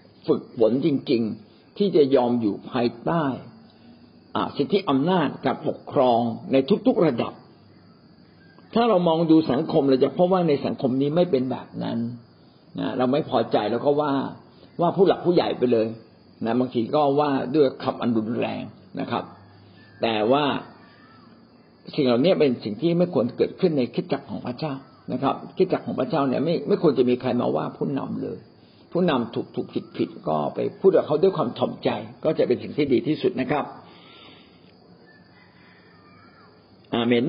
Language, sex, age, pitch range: Thai, male, 60-79, 120-165 Hz